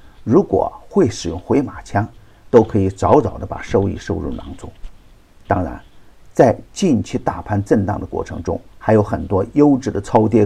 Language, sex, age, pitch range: Chinese, male, 50-69, 95-120 Hz